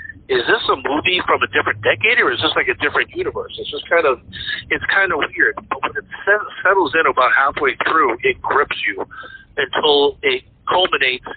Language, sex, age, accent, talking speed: English, male, 50-69, American, 200 wpm